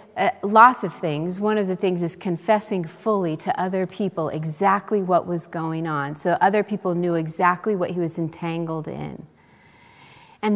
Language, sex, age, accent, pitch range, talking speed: English, female, 40-59, American, 165-210 Hz, 170 wpm